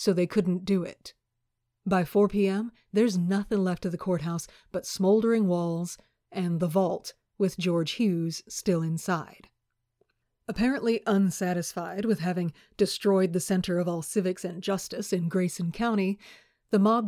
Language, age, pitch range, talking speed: English, 40-59, 175-205 Hz, 150 wpm